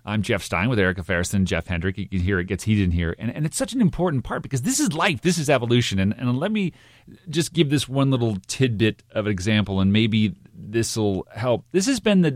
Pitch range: 110-160 Hz